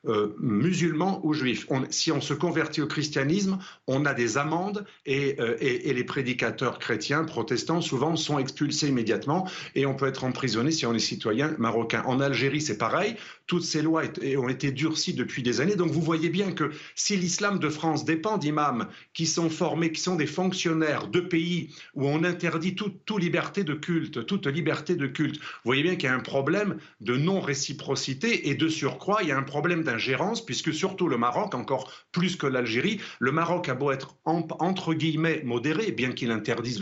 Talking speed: 195 wpm